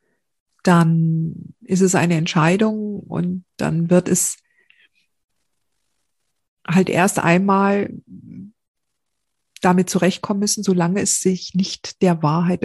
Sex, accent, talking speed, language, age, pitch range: female, German, 100 wpm, German, 50-69, 165-190 Hz